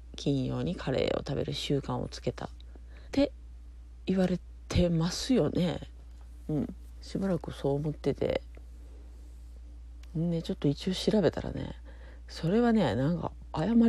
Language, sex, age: Japanese, female, 40-59